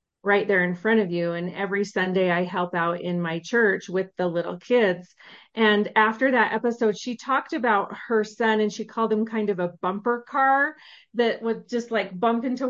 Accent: American